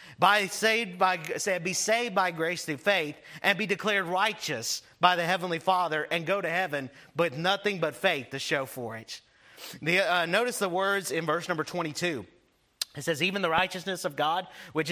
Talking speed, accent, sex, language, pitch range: 185 wpm, American, male, English, 160-200 Hz